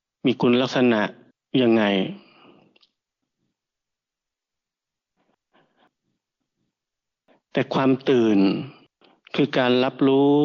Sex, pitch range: male, 115-140 Hz